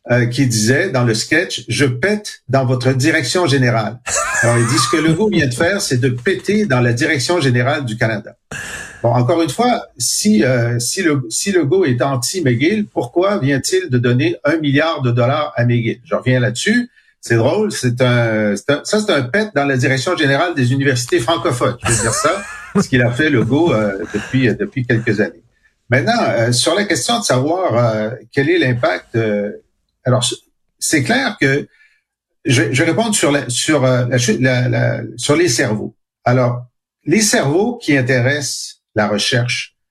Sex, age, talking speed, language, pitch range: male, 50-69, 190 wpm, French, 120-155 Hz